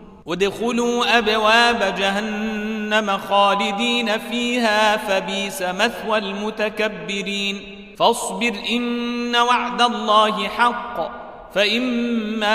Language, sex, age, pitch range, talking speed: Arabic, male, 40-59, 200-235 Hz, 65 wpm